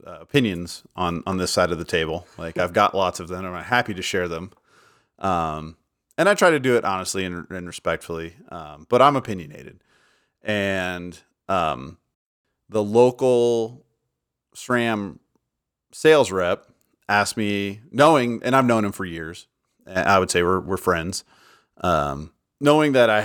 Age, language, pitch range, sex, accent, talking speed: 30-49, English, 90-115 Hz, male, American, 165 wpm